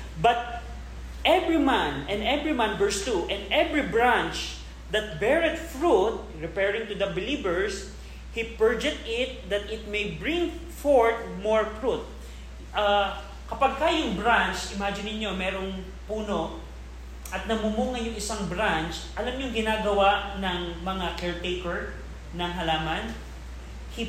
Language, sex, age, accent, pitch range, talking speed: Filipino, male, 20-39, native, 175-225 Hz, 125 wpm